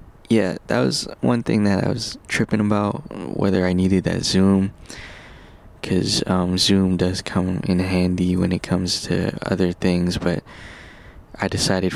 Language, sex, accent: English, male, American